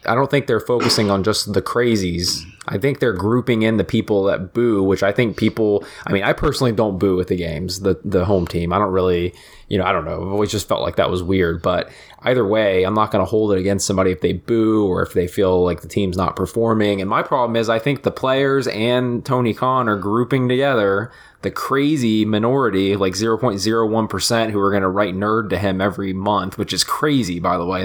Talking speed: 235 wpm